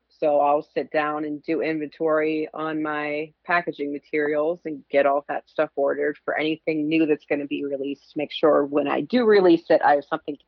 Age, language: 30-49, English